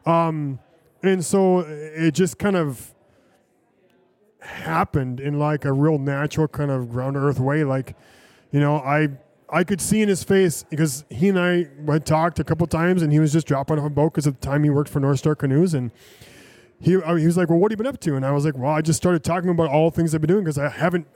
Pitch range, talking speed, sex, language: 145-175 Hz, 245 wpm, male, English